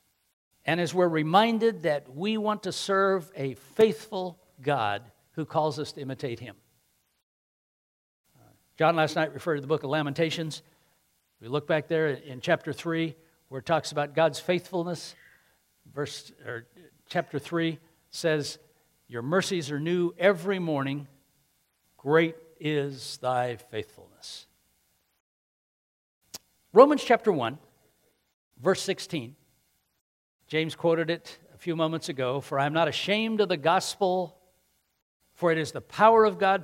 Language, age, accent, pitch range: English, 60-79, American, 130-180 Hz